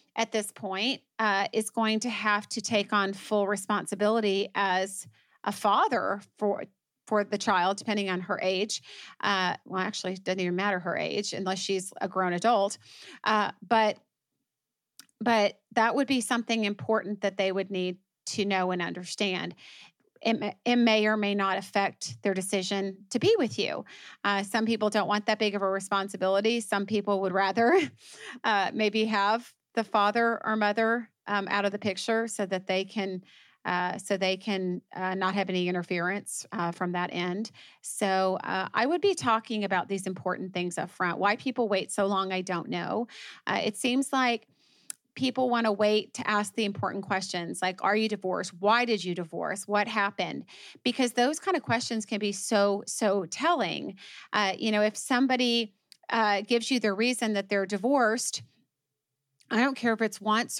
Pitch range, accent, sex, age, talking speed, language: 190-225 Hz, American, female, 30-49, 180 wpm, English